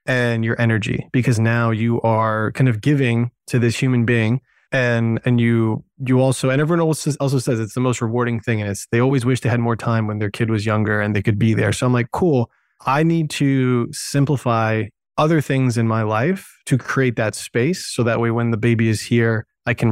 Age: 20-39